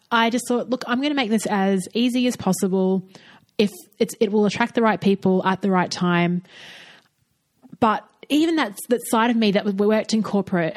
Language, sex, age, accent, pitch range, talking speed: English, female, 30-49, Australian, 185-215 Hz, 195 wpm